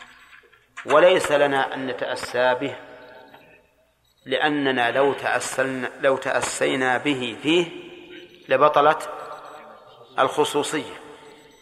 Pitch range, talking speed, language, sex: 130-165 Hz, 70 wpm, Arabic, male